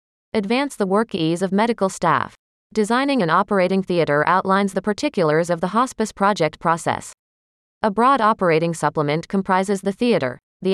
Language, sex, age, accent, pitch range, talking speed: English, female, 30-49, American, 160-230 Hz, 150 wpm